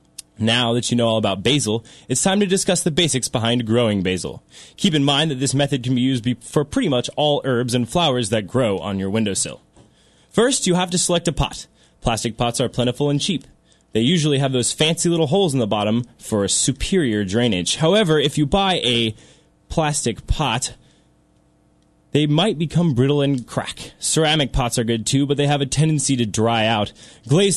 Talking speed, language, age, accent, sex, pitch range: 200 wpm, English, 10-29, American, male, 115-155 Hz